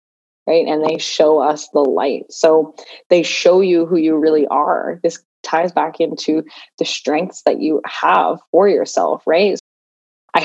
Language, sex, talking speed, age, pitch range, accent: English, female, 160 wpm, 20-39, 155-170 Hz, American